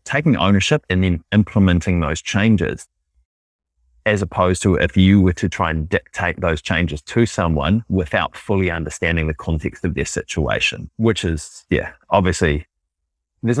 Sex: male